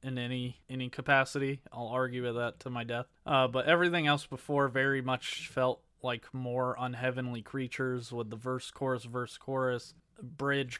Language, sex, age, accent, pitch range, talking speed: English, male, 20-39, American, 125-145 Hz, 165 wpm